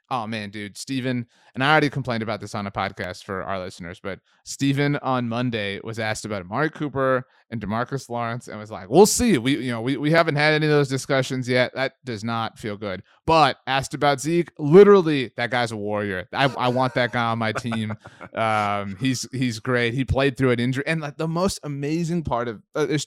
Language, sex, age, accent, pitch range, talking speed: English, male, 20-39, American, 115-160 Hz, 220 wpm